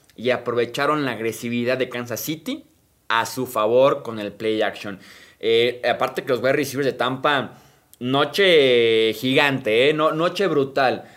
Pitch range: 120-175 Hz